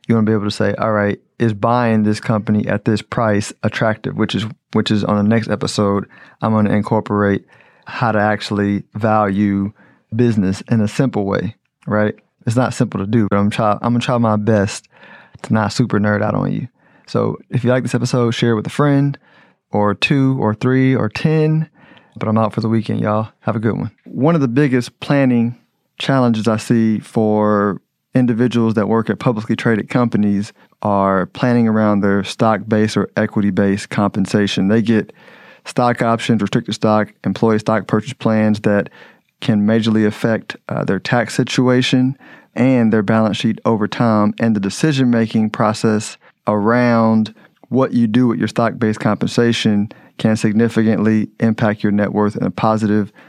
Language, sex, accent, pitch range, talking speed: English, male, American, 105-120 Hz, 175 wpm